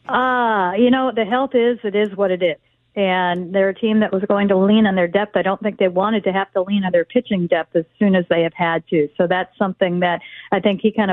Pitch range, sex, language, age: 180-210 Hz, female, English, 50-69